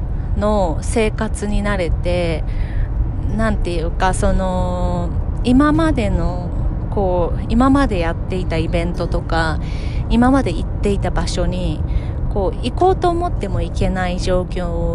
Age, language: 30-49, Japanese